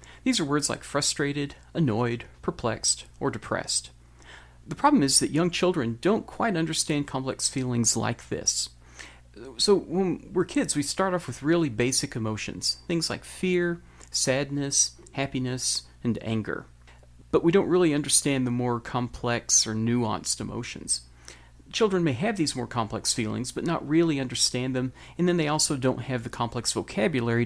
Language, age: English, 40-59